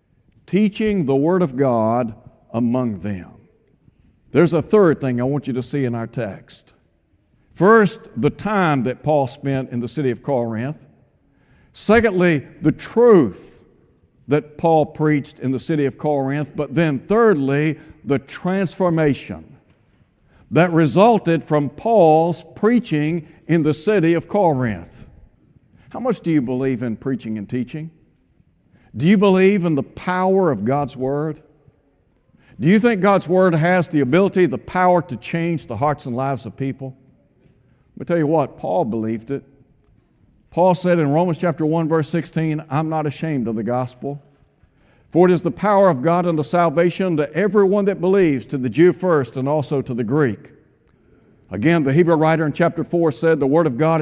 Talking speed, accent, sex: 165 wpm, American, male